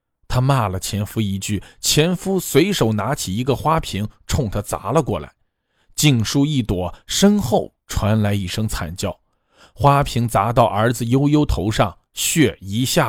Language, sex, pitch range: Chinese, male, 105-140 Hz